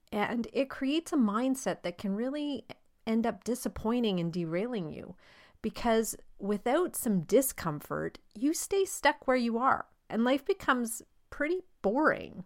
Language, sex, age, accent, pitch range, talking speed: English, female, 40-59, American, 185-260 Hz, 140 wpm